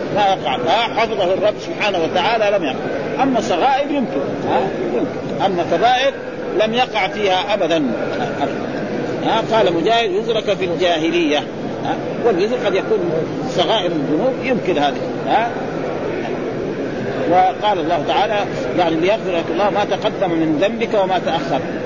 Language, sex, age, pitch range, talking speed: Arabic, male, 40-59, 170-225 Hz, 115 wpm